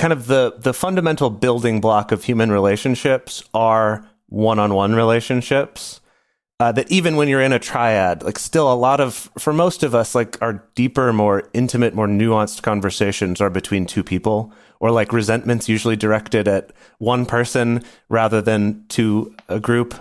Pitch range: 105-130 Hz